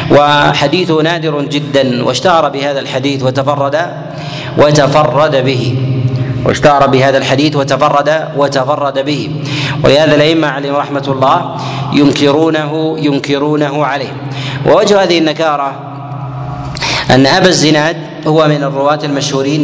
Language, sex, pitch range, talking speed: Arabic, male, 140-160 Hz, 105 wpm